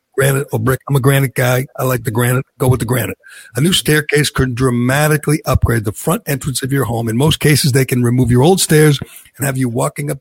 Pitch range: 120-145 Hz